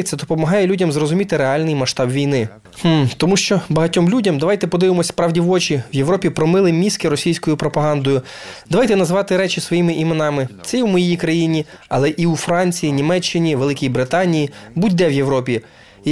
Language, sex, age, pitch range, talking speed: Ukrainian, male, 20-39, 155-190 Hz, 165 wpm